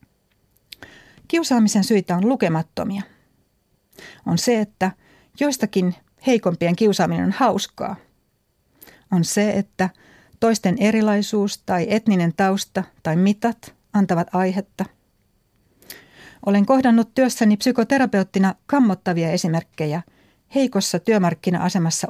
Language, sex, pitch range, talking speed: Finnish, female, 175-220 Hz, 85 wpm